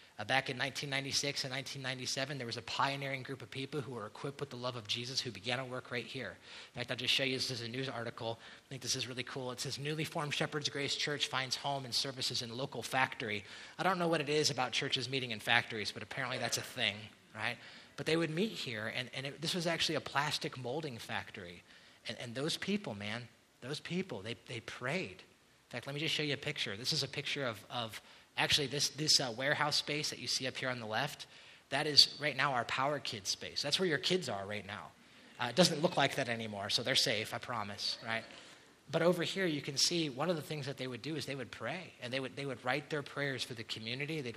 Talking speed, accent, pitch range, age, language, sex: 255 wpm, American, 120-150 Hz, 30-49, English, male